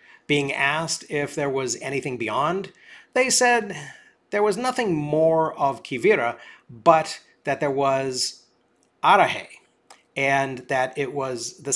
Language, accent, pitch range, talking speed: English, American, 135-170 Hz, 130 wpm